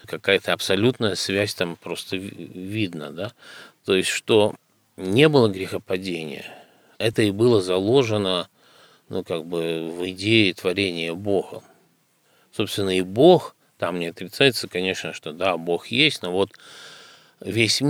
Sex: male